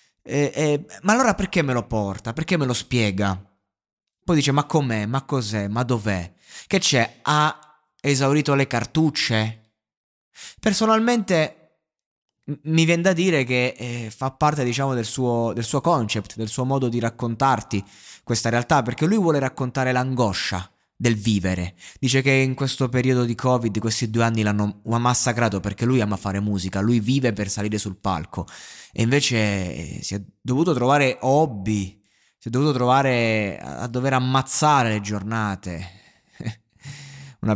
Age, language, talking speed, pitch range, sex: 20-39, Italian, 145 wpm, 105-135 Hz, male